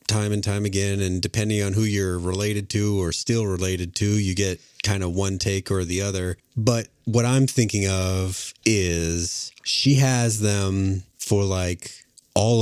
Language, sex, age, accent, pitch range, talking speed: English, male, 30-49, American, 90-115 Hz, 170 wpm